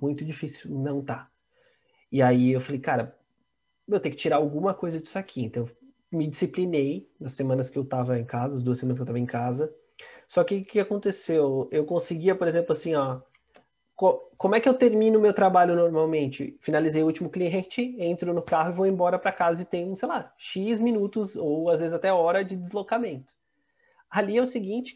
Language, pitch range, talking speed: Portuguese, 150-215 Hz, 200 wpm